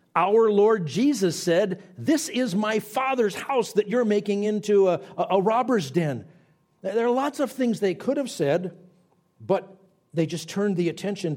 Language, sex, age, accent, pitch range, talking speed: English, male, 50-69, American, 125-190 Hz, 170 wpm